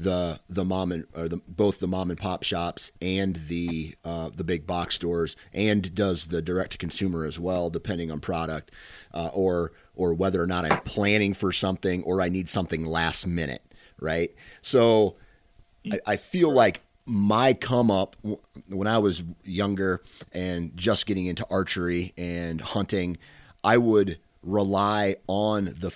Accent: American